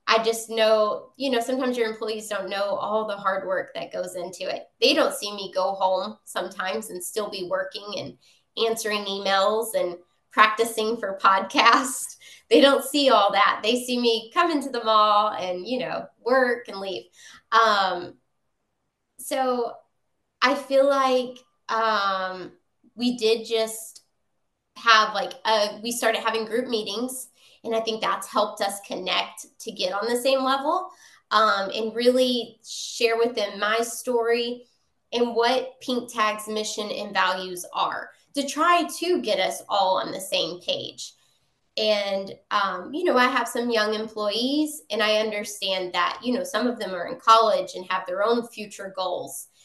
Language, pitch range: English, 200-250 Hz